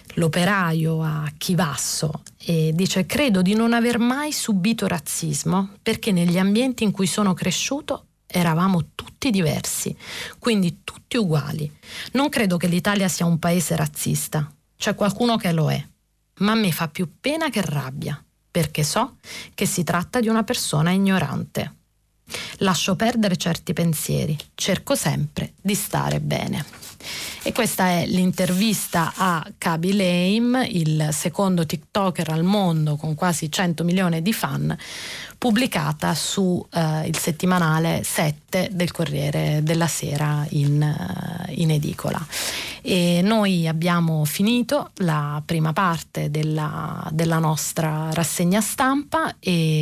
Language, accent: Italian, native